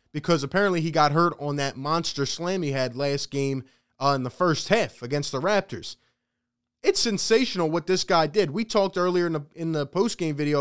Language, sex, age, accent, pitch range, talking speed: English, male, 20-39, American, 140-180 Hz, 205 wpm